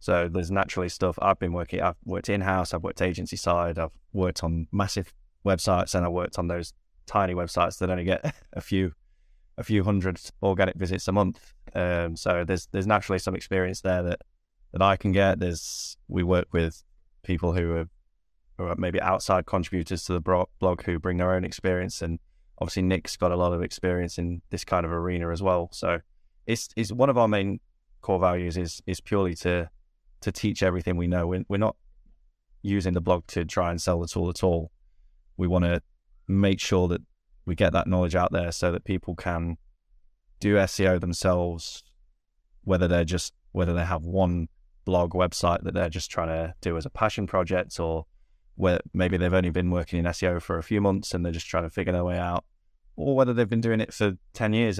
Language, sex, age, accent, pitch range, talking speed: English, male, 20-39, British, 85-95 Hz, 205 wpm